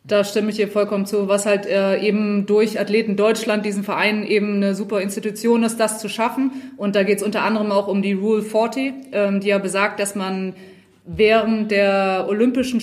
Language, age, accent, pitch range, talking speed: German, 20-39, German, 190-215 Hz, 200 wpm